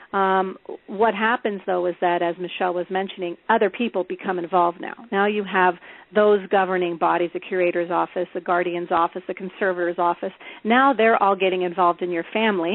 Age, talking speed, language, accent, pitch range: 40-59, 180 wpm, English, American, 180-200 Hz